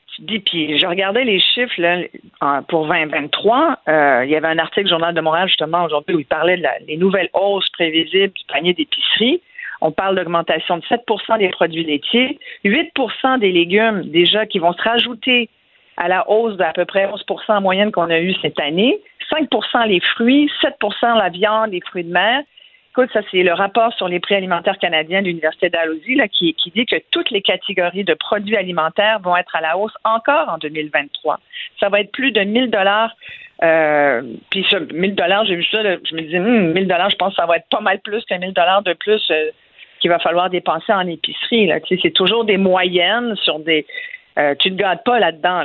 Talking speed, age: 205 wpm, 50-69